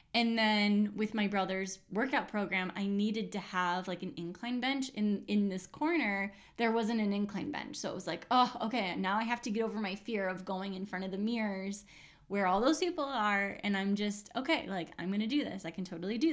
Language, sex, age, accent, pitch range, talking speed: English, female, 10-29, American, 195-245 Hz, 230 wpm